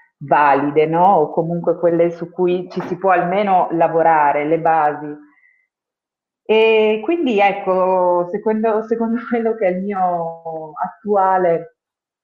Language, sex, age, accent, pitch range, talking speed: Italian, female, 30-49, native, 165-210 Hz, 125 wpm